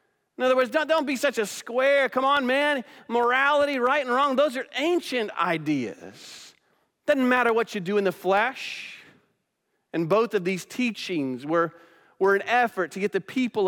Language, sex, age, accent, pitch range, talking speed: English, male, 40-59, American, 170-230 Hz, 175 wpm